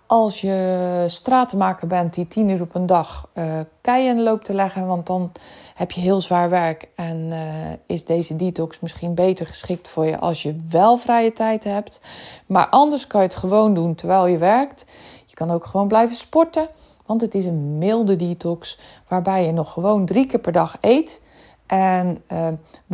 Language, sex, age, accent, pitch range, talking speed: Dutch, female, 20-39, Dutch, 170-220 Hz, 185 wpm